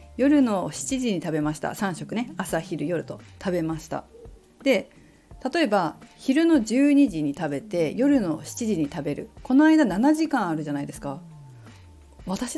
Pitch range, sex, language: 160-255 Hz, female, Japanese